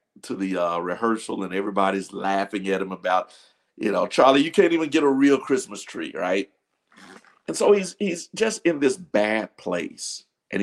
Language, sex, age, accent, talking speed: English, male, 50-69, American, 180 wpm